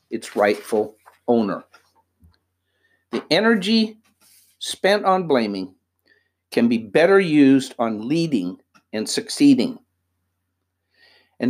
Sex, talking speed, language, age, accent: male, 90 wpm, English, 60-79, American